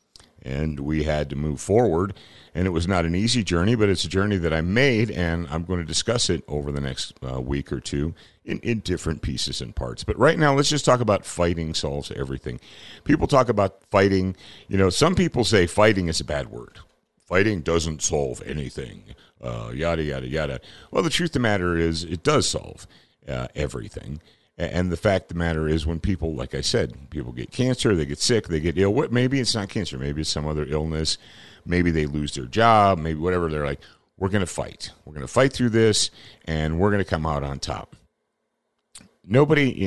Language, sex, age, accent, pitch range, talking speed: English, male, 50-69, American, 75-110 Hz, 210 wpm